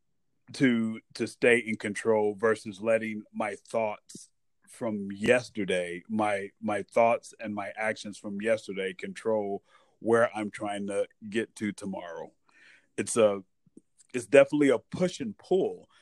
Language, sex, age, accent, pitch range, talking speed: English, male, 30-49, American, 105-130 Hz, 130 wpm